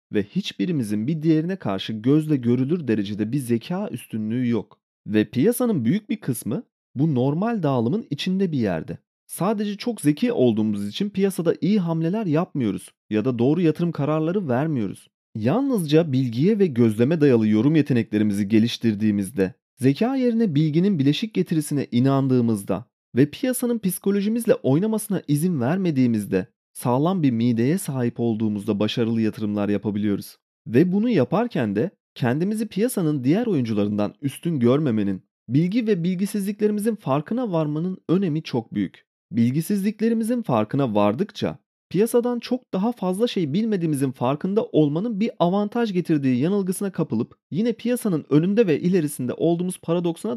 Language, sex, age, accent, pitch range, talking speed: Turkish, male, 30-49, native, 120-200 Hz, 125 wpm